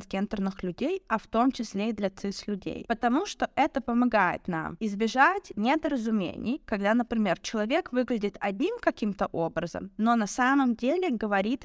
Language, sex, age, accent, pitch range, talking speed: Russian, female, 20-39, native, 200-255 Hz, 145 wpm